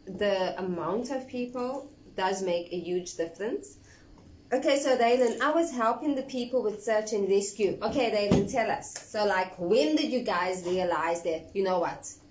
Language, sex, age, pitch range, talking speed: English, female, 20-39, 185-270 Hz, 175 wpm